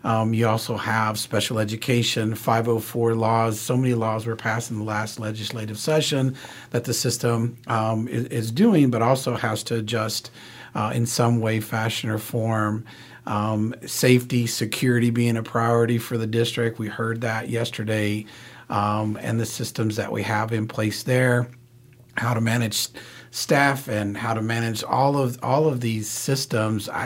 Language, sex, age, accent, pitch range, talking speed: English, male, 40-59, American, 110-120 Hz, 165 wpm